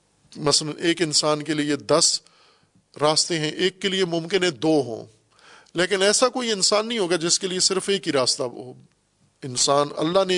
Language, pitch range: Urdu, 140-180 Hz